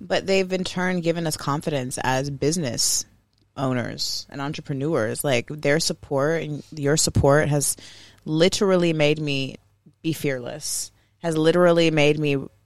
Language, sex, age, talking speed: English, female, 20-39, 135 wpm